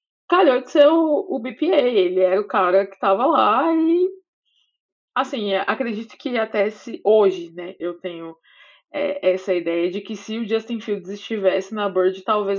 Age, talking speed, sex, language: 20-39, 170 wpm, female, Portuguese